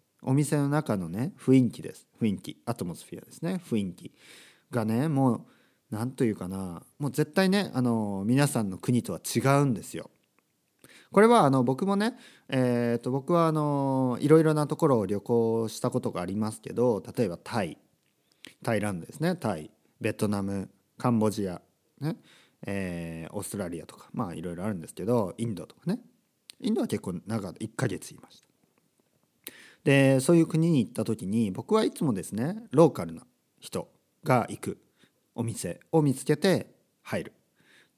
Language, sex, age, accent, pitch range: Japanese, male, 40-59, native, 105-150 Hz